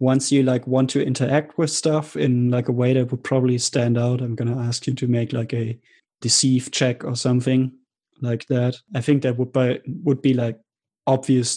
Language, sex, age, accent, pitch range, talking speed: English, male, 20-39, German, 125-140 Hz, 205 wpm